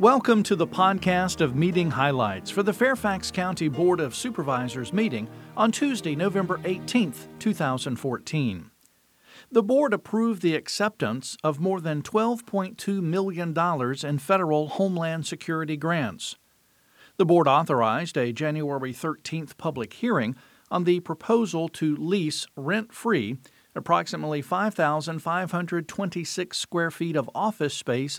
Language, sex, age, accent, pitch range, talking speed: English, male, 50-69, American, 140-195 Hz, 120 wpm